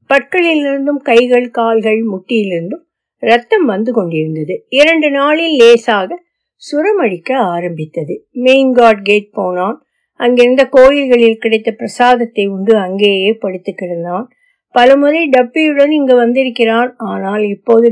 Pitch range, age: 215-280 Hz, 50-69